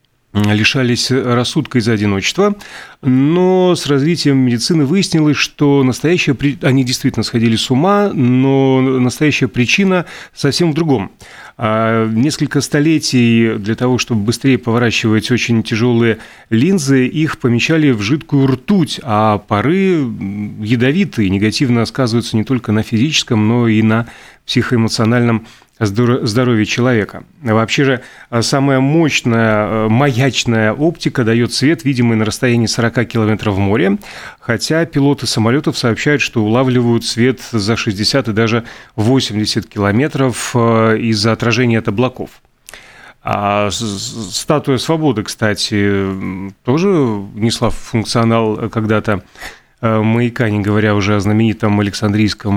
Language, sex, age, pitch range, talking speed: Russian, male, 30-49, 110-135 Hz, 110 wpm